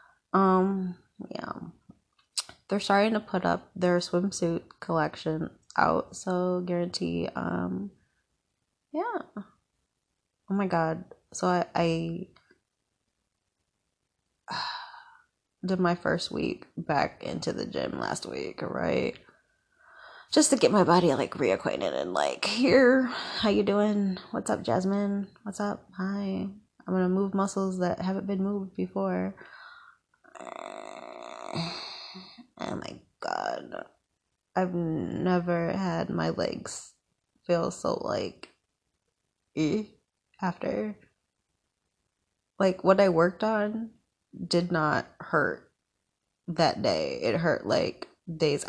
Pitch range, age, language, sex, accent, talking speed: 170-210 Hz, 20-39, English, female, American, 110 wpm